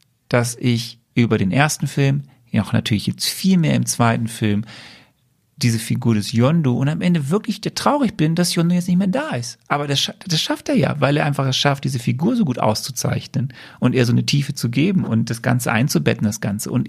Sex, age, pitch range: male, 40-59, 115-145 Hz